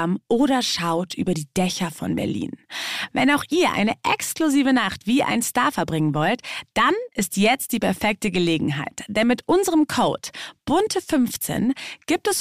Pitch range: 185-255 Hz